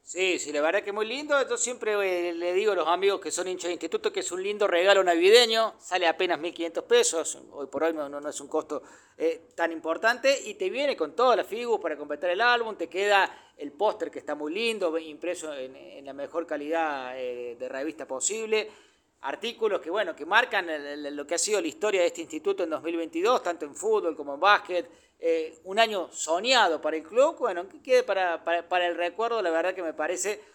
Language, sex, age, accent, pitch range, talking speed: Spanish, male, 40-59, Argentinian, 165-230 Hz, 220 wpm